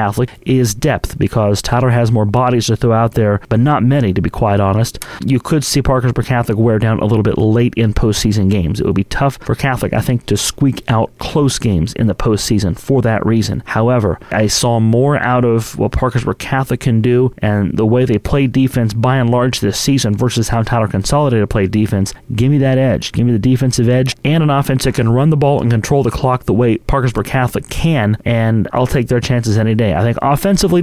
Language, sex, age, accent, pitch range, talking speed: English, male, 30-49, American, 110-130 Hz, 225 wpm